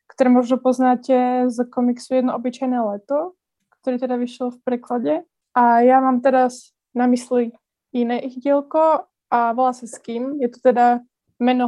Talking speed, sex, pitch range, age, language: 170 wpm, female, 240-255 Hz, 20-39, Slovak